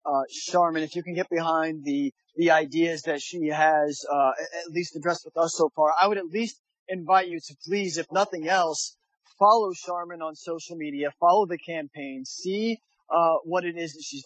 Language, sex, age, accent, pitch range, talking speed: English, male, 30-49, American, 155-205 Hz, 200 wpm